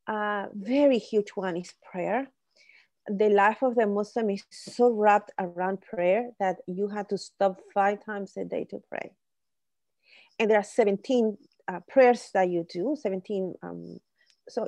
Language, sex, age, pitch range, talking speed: English, female, 30-49, 195-230 Hz, 165 wpm